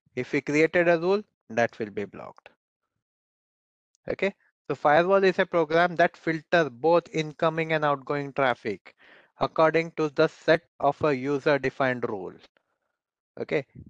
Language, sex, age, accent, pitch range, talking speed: English, male, 20-39, Indian, 145-170 Hz, 135 wpm